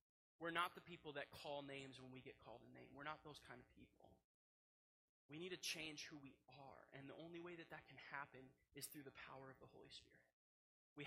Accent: American